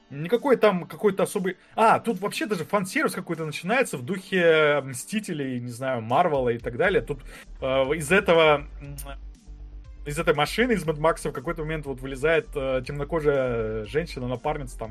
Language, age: Russian, 20-39